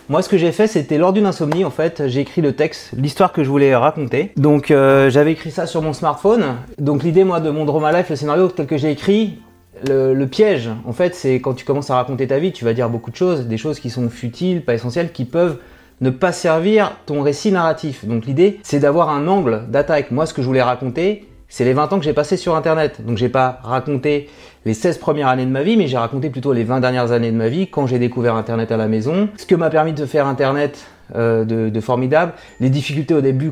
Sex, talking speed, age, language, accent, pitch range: male, 255 wpm, 30-49, French, French, 125-170 Hz